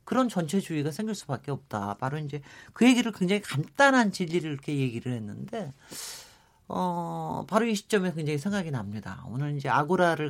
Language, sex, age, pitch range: Korean, male, 40-59, 145-215 Hz